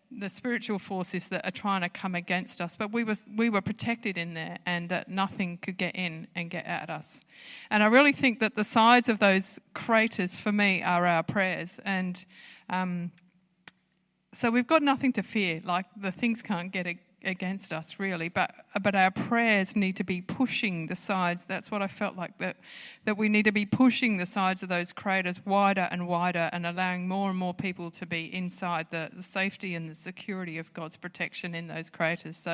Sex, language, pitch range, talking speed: female, English, 175-210 Hz, 205 wpm